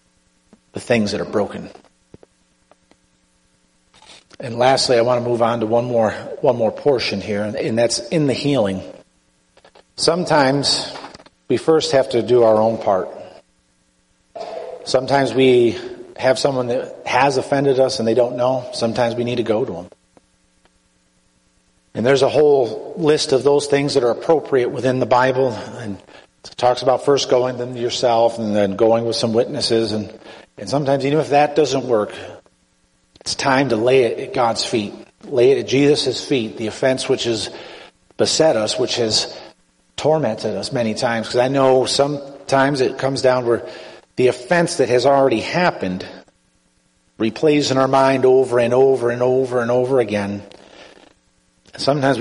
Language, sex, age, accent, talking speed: English, male, 40-59, American, 160 wpm